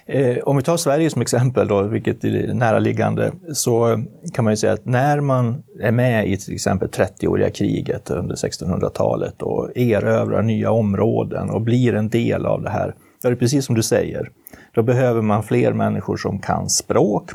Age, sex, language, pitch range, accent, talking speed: 30-49, male, Swedish, 110-130 Hz, native, 180 wpm